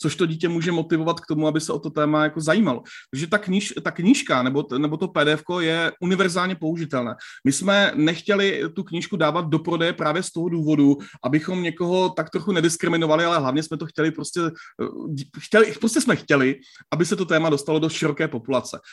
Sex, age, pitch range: male, 30-49, 145-175 Hz